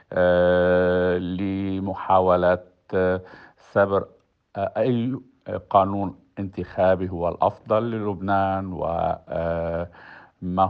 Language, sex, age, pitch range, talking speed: Arabic, male, 50-69, 90-100 Hz, 75 wpm